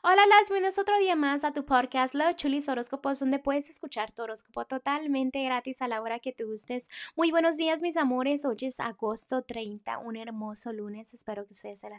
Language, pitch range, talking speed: Spanish, 210-275 Hz, 210 wpm